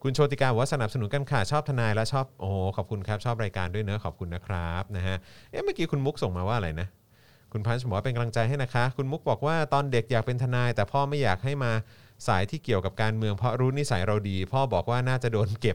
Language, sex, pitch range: Thai, male, 95-125 Hz